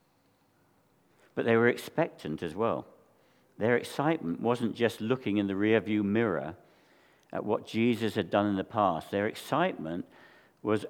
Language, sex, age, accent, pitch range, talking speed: English, male, 60-79, British, 90-115 Hz, 145 wpm